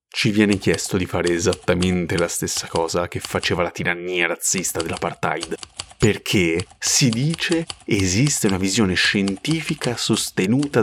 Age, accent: 30-49, native